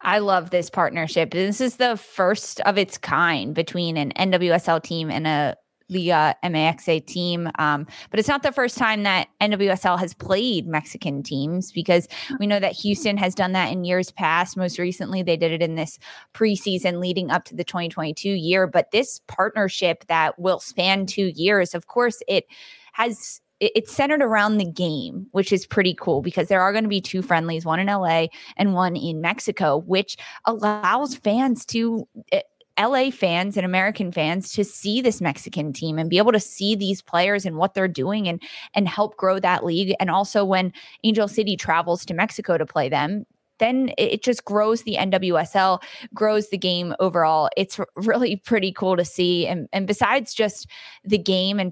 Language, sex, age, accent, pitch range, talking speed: English, female, 20-39, American, 175-205 Hz, 185 wpm